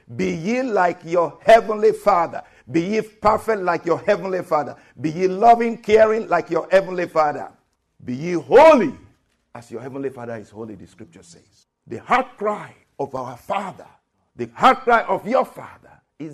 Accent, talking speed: Nigerian, 170 wpm